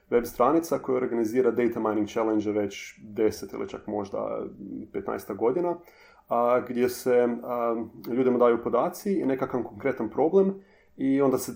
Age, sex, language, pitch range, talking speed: 30-49, male, Croatian, 115-130 Hz, 145 wpm